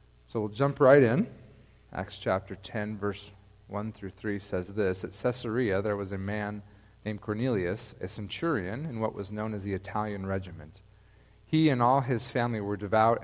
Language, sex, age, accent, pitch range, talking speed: English, male, 40-59, American, 100-125 Hz, 175 wpm